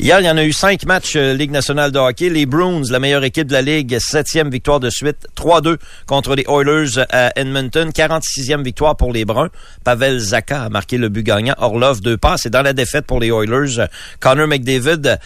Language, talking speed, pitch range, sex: French, 210 wpm, 120-150 Hz, male